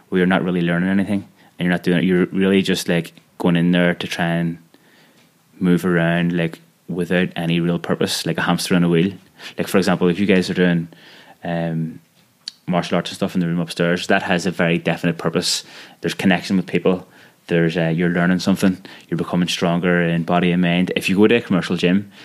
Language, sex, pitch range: English, male, 85-95 Hz